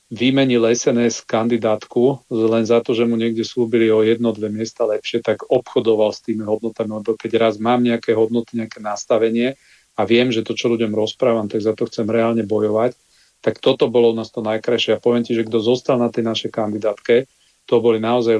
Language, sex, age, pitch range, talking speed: Slovak, male, 40-59, 115-125 Hz, 200 wpm